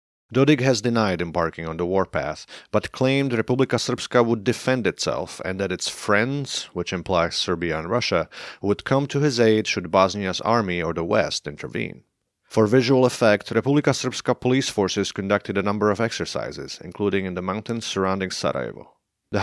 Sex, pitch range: male, 100-130 Hz